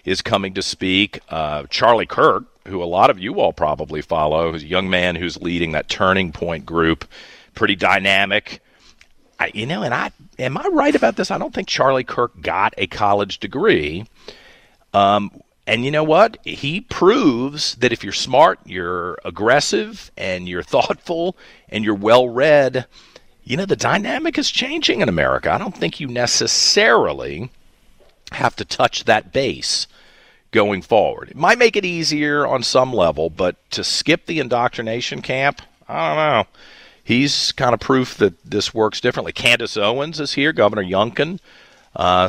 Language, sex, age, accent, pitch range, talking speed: English, male, 40-59, American, 90-140 Hz, 165 wpm